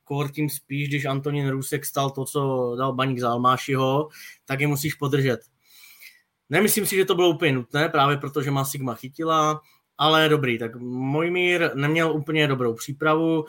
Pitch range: 130-155 Hz